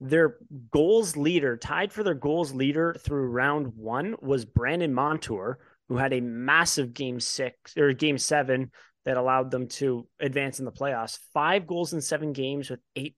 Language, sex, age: English, male, 30-49